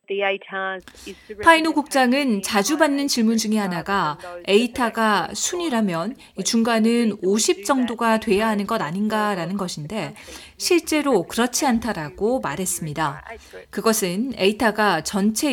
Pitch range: 195-275 Hz